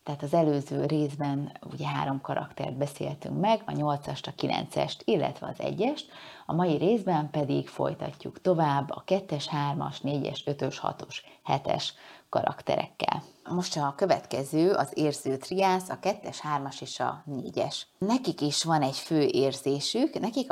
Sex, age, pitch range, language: female, 30-49, 135-170 Hz, Hungarian